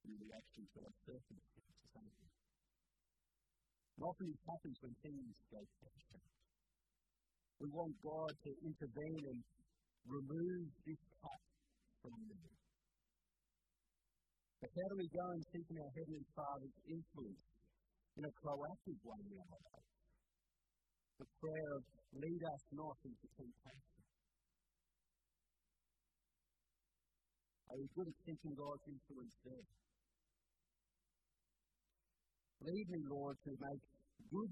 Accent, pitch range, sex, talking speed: American, 125-160 Hz, male, 110 wpm